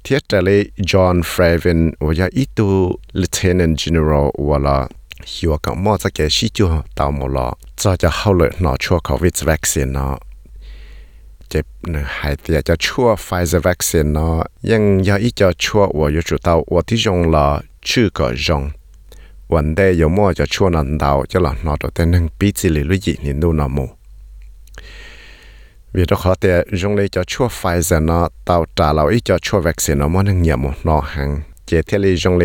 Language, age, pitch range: English, 60-79, 75-95 Hz